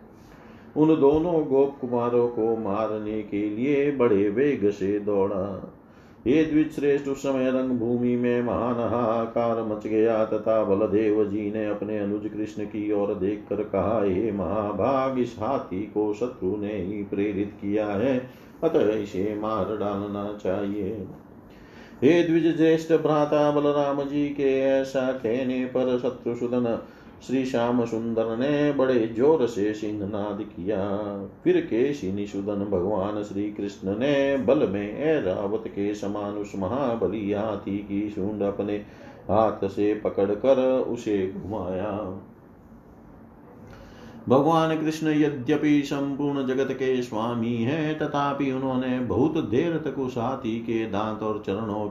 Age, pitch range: 40-59, 105-135 Hz